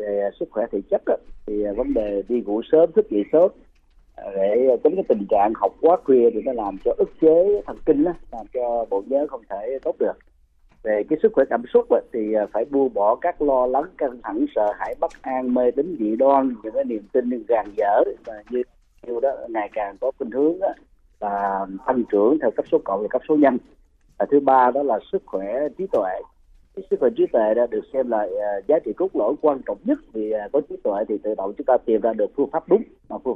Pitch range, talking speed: 100-150 Hz, 225 wpm